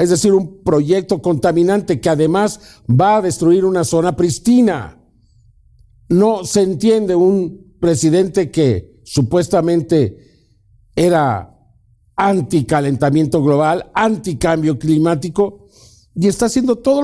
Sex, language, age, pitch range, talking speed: male, Spanish, 50-69, 150-235 Hz, 100 wpm